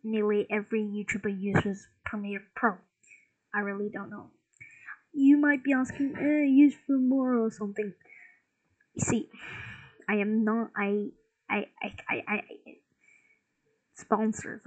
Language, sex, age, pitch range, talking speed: English, female, 20-39, 205-255 Hz, 135 wpm